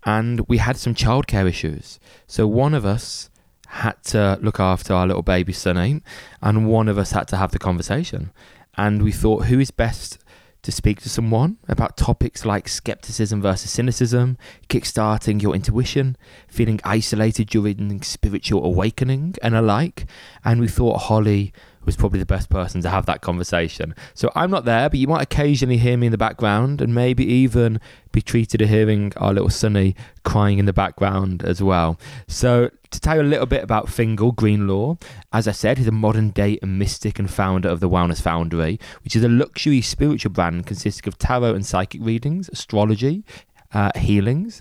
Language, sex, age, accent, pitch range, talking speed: English, male, 20-39, British, 95-120 Hz, 180 wpm